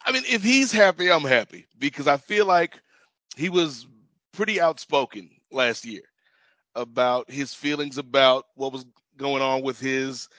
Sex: male